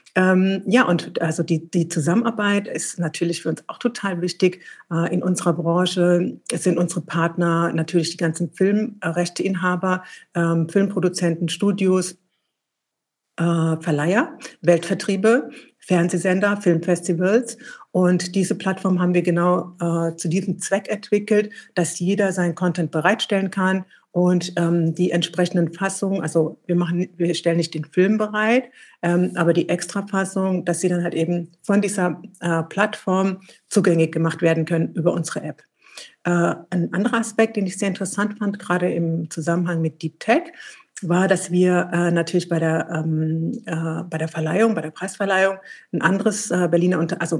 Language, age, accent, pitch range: German, 60-79, German, 170-195 Hz